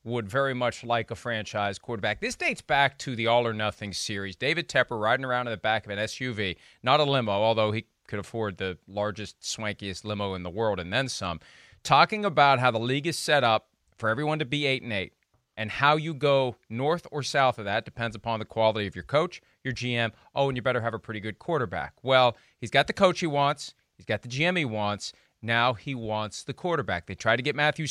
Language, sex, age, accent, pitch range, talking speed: English, male, 40-59, American, 110-145 Hz, 230 wpm